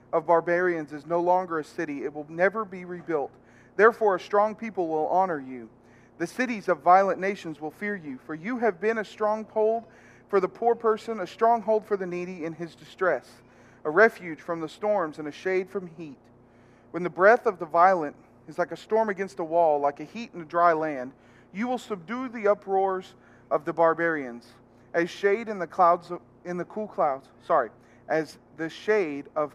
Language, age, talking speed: English, 40-59, 195 wpm